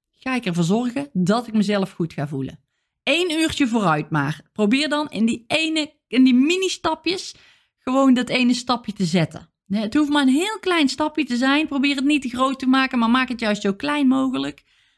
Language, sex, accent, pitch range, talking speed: Dutch, female, Dutch, 185-265 Hz, 205 wpm